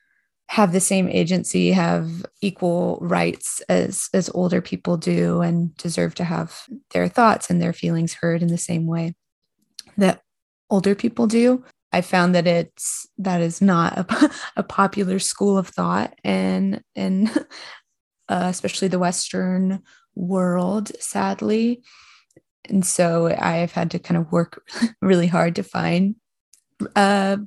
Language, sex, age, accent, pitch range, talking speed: English, female, 20-39, American, 170-205 Hz, 140 wpm